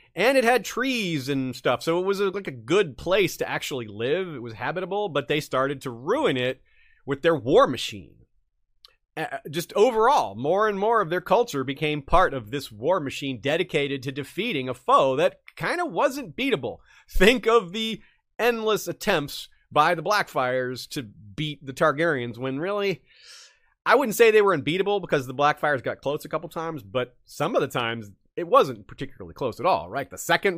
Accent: American